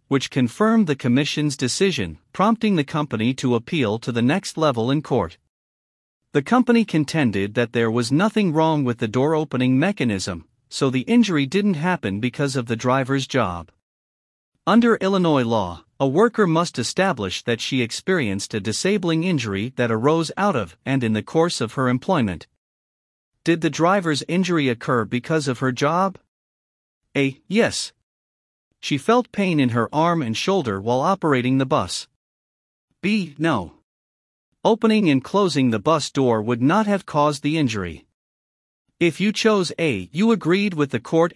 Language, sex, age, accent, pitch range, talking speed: English, male, 50-69, American, 120-165 Hz, 155 wpm